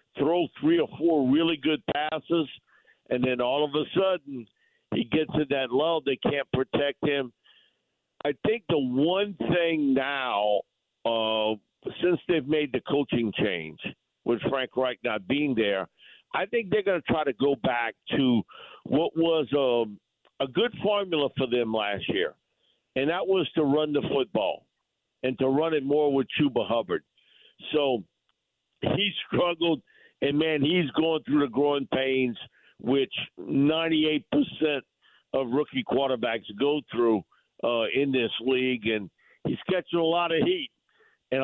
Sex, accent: male, American